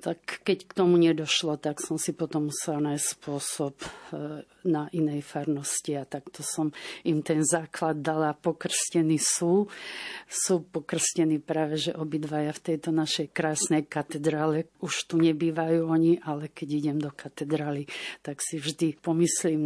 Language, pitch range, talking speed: Slovak, 155-175 Hz, 145 wpm